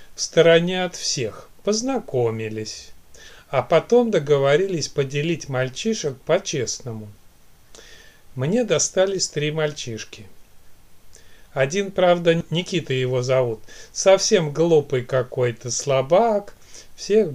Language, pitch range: Russian, 115-160 Hz